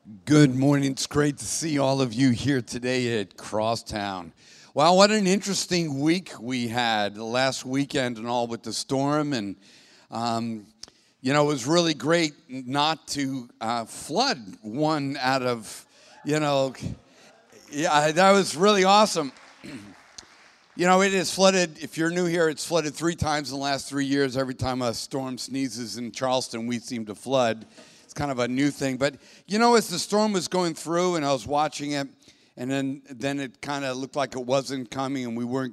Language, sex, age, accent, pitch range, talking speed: English, male, 50-69, American, 130-165 Hz, 190 wpm